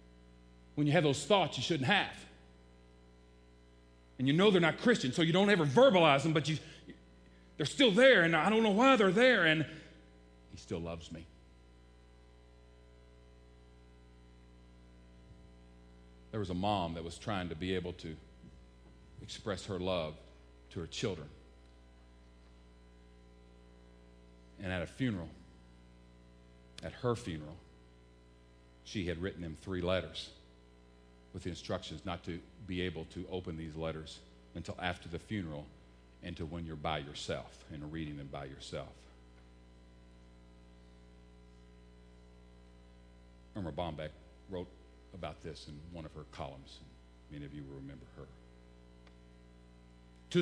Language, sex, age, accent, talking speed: English, male, 40-59, American, 130 wpm